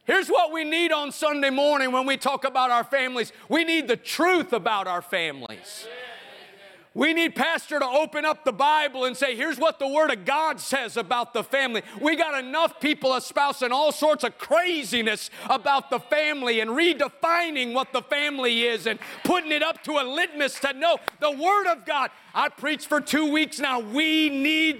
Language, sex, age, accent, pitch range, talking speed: English, male, 40-59, American, 245-305 Hz, 190 wpm